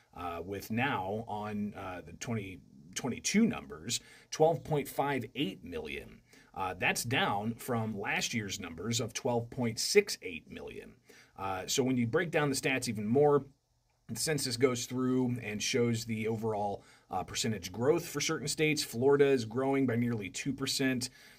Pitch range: 115-140 Hz